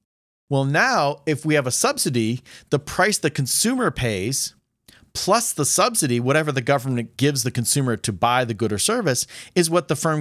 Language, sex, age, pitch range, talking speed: English, male, 40-59, 115-150 Hz, 180 wpm